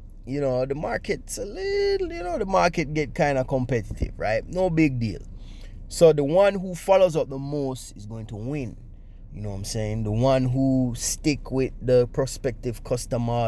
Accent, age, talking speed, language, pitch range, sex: Jamaican, 20-39, 190 wpm, English, 100-130 Hz, male